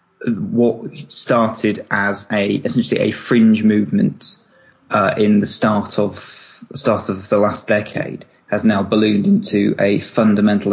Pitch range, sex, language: 100-110 Hz, male, English